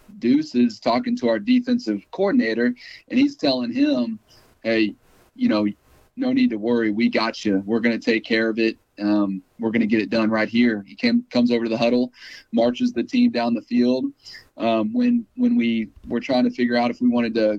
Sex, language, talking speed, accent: male, English, 215 wpm, American